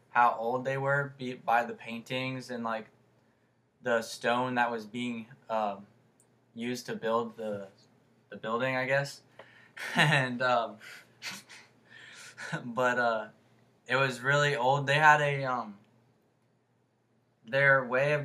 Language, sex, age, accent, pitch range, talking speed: English, male, 10-29, American, 115-130 Hz, 130 wpm